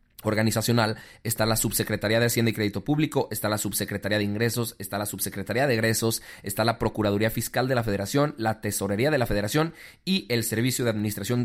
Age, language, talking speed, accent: 30-49, Spanish, 190 wpm, Mexican